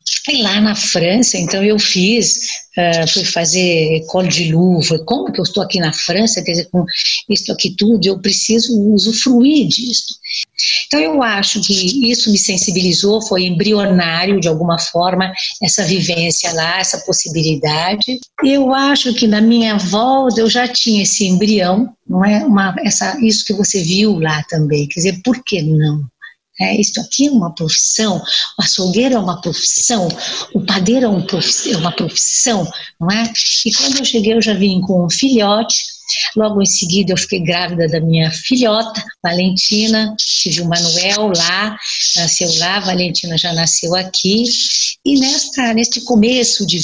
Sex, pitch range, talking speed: female, 175-225 Hz, 155 wpm